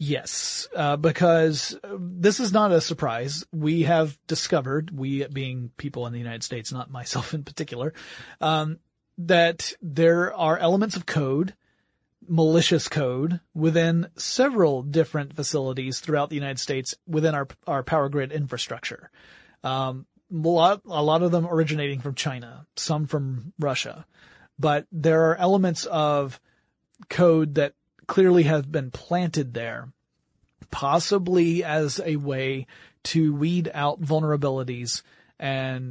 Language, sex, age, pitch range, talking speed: English, male, 30-49, 135-165 Hz, 130 wpm